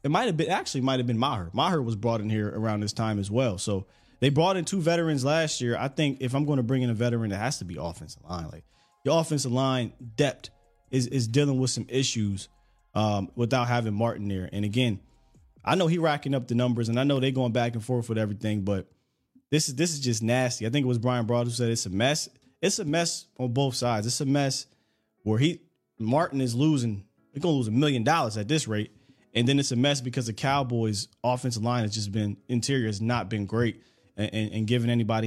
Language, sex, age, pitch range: English, male, 20-39, 110-145 Hz